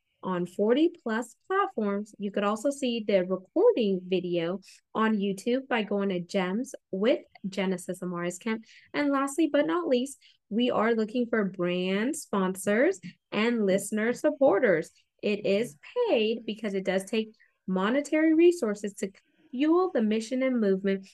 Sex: female